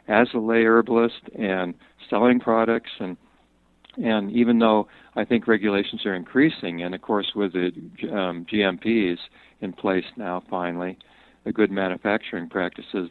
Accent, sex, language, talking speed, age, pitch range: American, male, English, 140 wpm, 50-69, 90-105 Hz